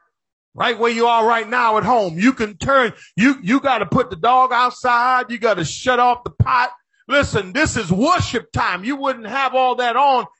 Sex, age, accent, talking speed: male, 40-59, American, 210 wpm